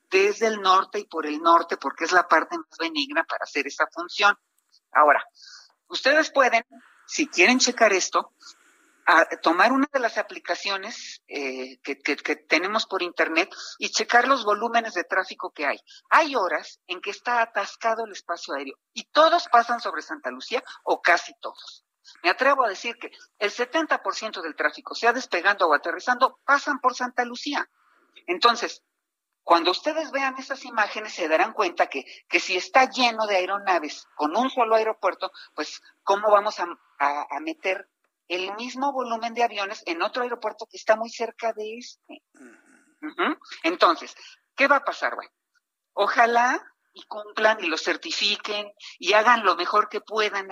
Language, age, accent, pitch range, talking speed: Spanish, 50-69, Mexican, 185-275 Hz, 165 wpm